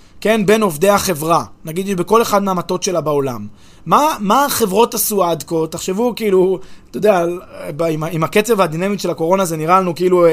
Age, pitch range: 20-39, 170-235 Hz